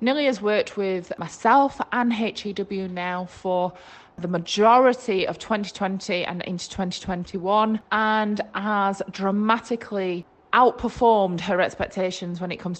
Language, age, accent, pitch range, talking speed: English, 20-39, British, 180-215 Hz, 115 wpm